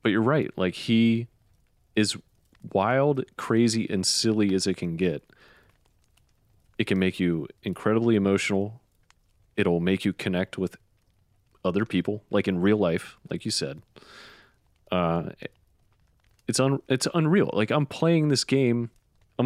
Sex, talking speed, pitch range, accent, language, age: male, 140 wpm, 90-115 Hz, American, English, 30-49